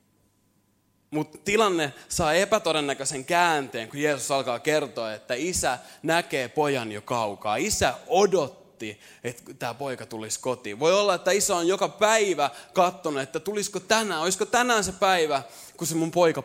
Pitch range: 125-195 Hz